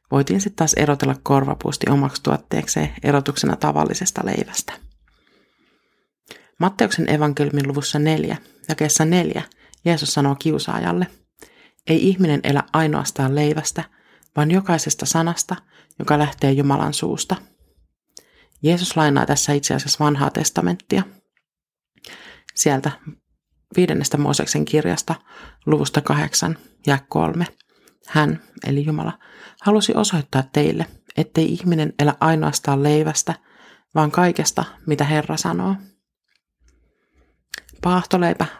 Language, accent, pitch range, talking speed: Finnish, native, 140-170 Hz, 100 wpm